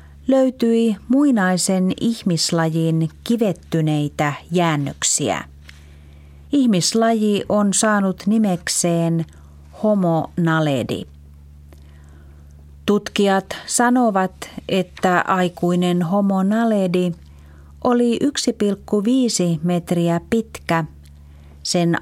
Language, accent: Finnish, native